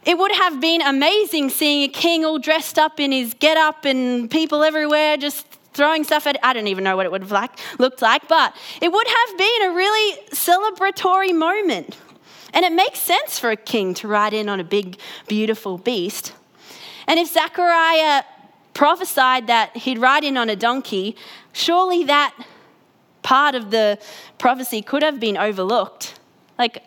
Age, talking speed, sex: 20-39, 175 wpm, female